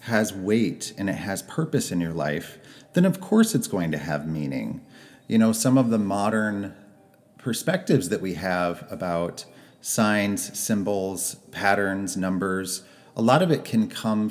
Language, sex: English, male